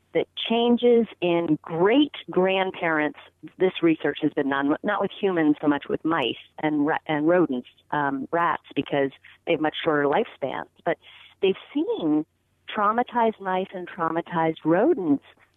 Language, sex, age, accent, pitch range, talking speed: English, female, 40-59, American, 155-205 Hz, 140 wpm